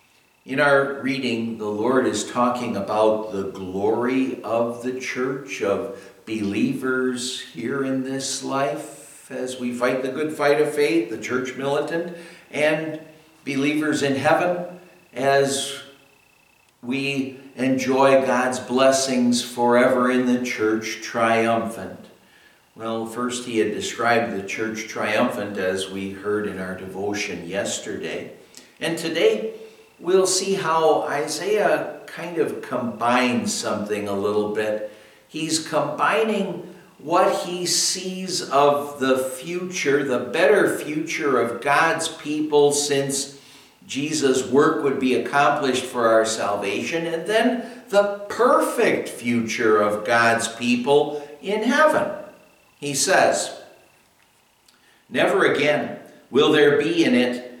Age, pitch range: 60-79, 120-155 Hz